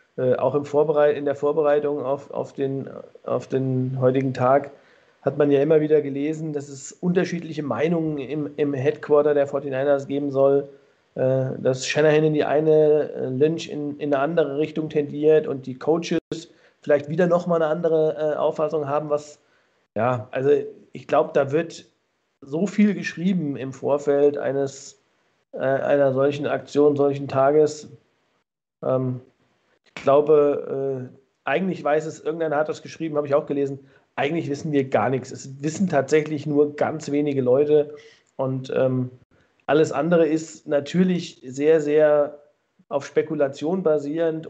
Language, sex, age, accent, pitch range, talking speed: German, male, 40-59, German, 140-155 Hz, 150 wpm